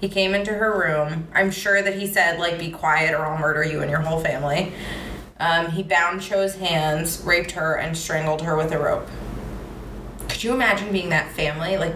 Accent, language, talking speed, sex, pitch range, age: American, English, 205 wpm, female, 160-200 Hz, 20-39